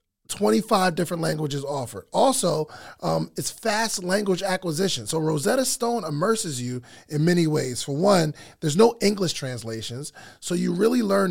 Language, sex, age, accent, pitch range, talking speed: English, male, 30-49, American, 155-235 Hz, 150 wpm